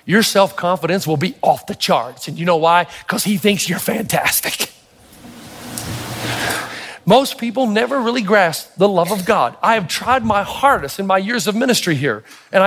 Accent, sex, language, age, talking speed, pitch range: American, male, English, 40-59, 175 wpm, 190-245 Hz